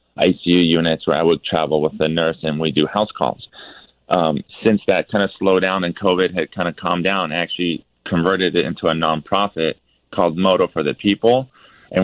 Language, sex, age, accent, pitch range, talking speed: English, male, 30-49, American, 80-90 Hz, 205 wpm